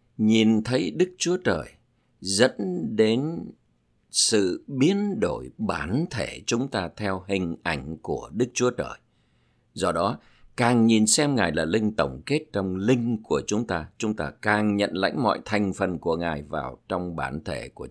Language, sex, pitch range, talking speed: Vietnamese, male, 90-120 Hz, 170 wpm